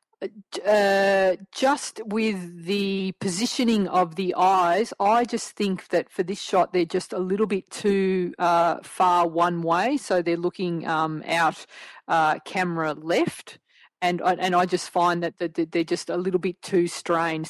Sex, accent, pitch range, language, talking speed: female, Australian, 165-190 Hz, English, 160 wpm